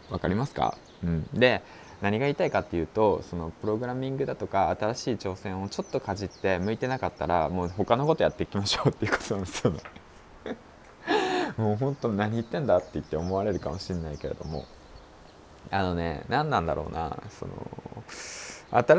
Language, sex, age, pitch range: Japanese, male, 20-39, 90-120 Hz